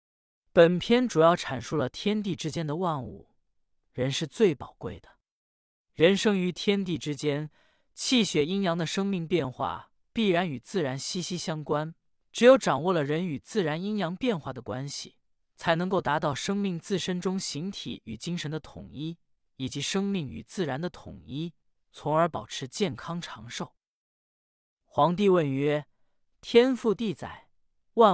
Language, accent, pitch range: Chinese, native, 145-205 Hz